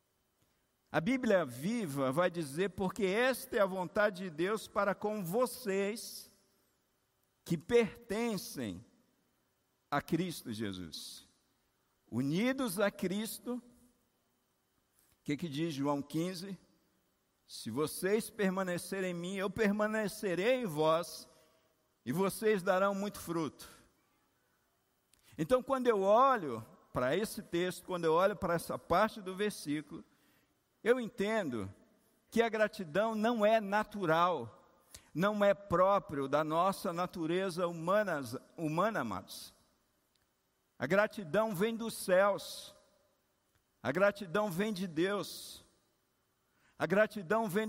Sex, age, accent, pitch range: male, 50-69, Brazilian, 170-215 Hz